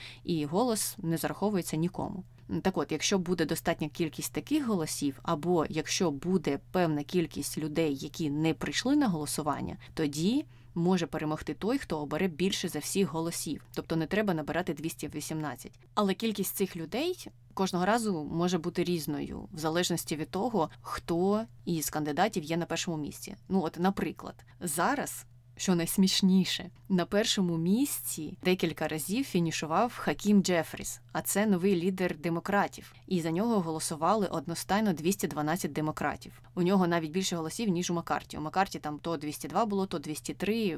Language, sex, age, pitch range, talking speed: Ukrainian, female, 20-39, 155-190 Hz, 150 wpm